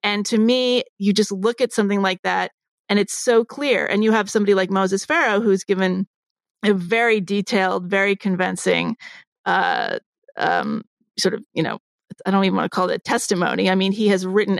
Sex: female